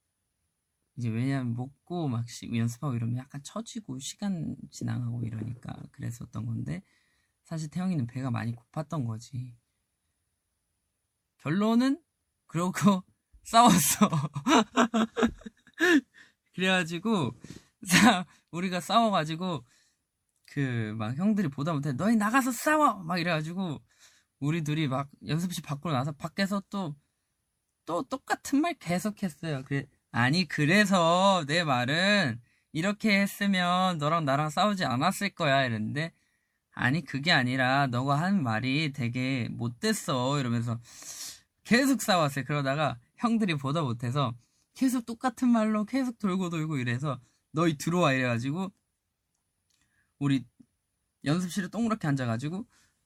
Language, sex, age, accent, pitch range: Korean, male, 20-39, native, 125-195 Hz